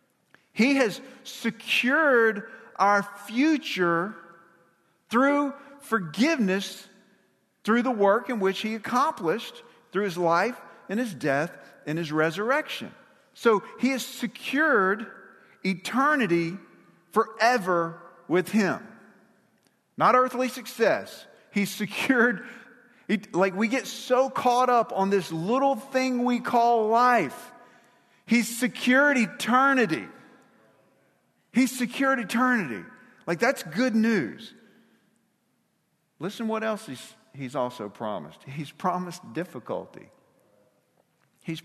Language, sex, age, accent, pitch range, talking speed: English, male, 50-69, American, 170-245 Hz, 100 wpm